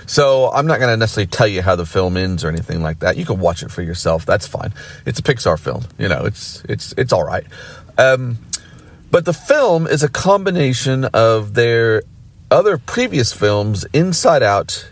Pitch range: 90-120 Hz